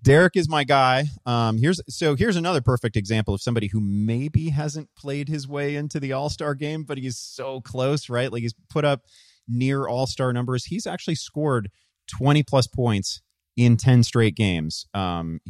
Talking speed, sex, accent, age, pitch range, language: 180 wpm, male, American, 30-49, 95-130 Hz, English